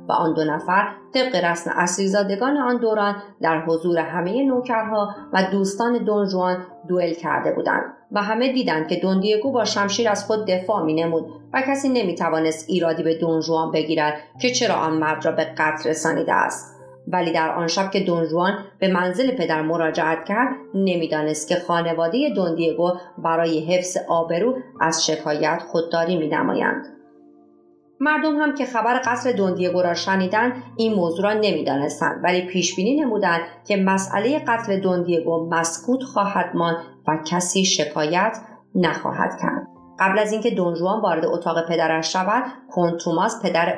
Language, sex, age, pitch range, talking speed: Persian, female, 30-49, 165-210 Hz, 145 wpm